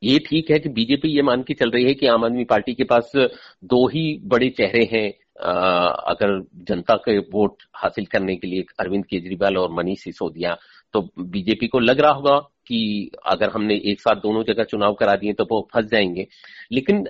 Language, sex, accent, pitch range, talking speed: Hindi, male, native, 115-165 Hz, 200 wpm